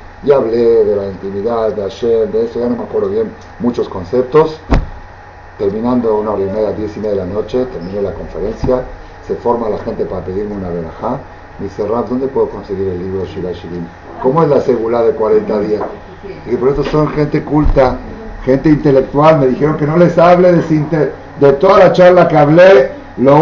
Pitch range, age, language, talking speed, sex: 115-155 Hz, 50-69, Spanish, 195 wpm, male